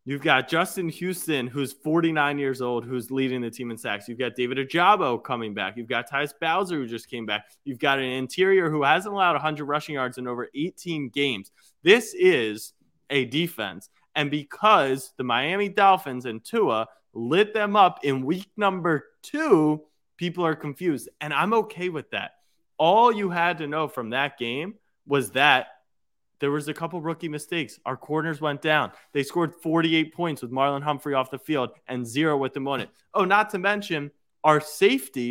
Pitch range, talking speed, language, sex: 135-190 Hz, 185 wpm, English, male